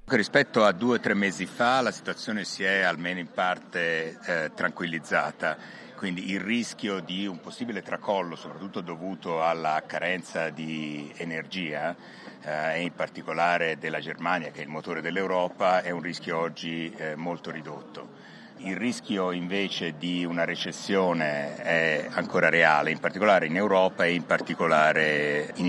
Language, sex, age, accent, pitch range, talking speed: Italian, male, 60-79, native, 80-90 Hz, 145 wpm